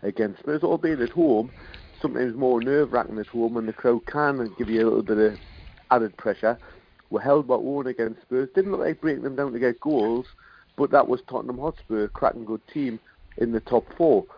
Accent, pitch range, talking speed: British, 105-130 Hz, 210 wpm